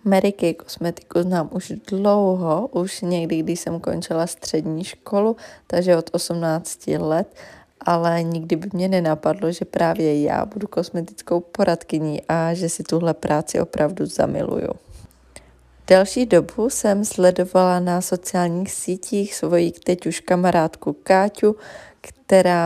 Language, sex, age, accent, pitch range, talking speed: Czech, female, 20-39, native, 170-190 Hz, 125 wpm